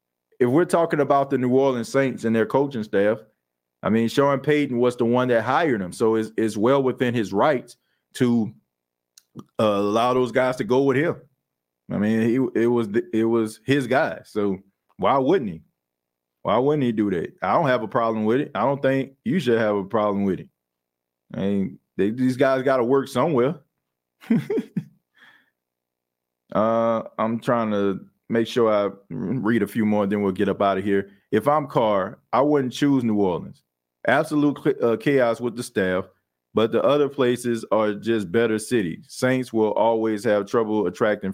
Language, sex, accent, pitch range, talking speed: English, male, American, 100-135 Hz, 185 wpm